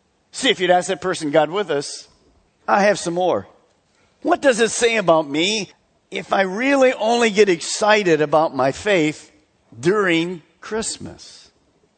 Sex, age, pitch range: male, 50-69, 160-225 Hz